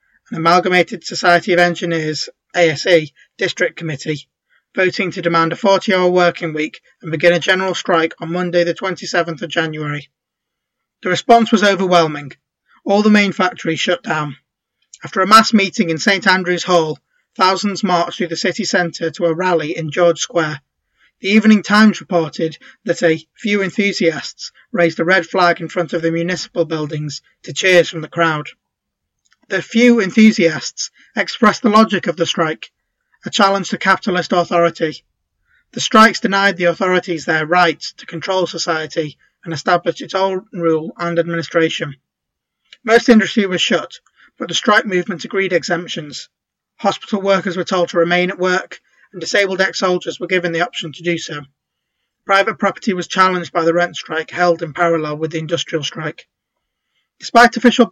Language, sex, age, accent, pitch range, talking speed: English, male, 20-39, British, 165-195 Hz, 165 wpm